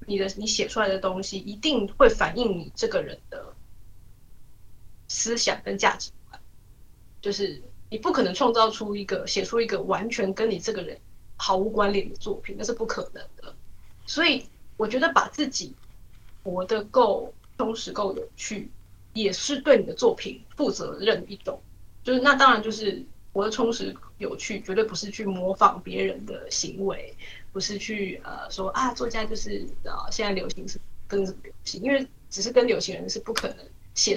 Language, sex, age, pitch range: Chinese, female, 20-39, 190-245 Hz